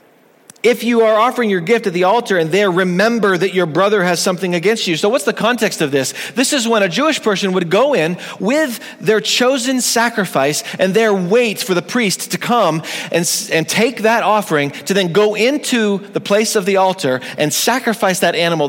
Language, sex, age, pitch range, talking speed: English, male, 40-59, 185-230 Hz, 205 wpm